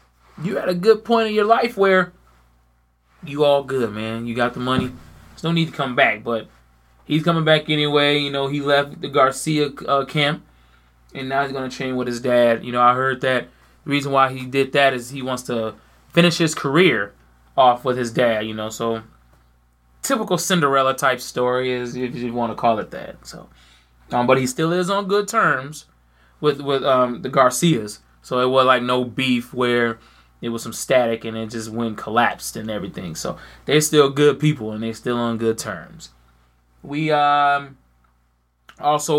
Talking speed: 195 wpm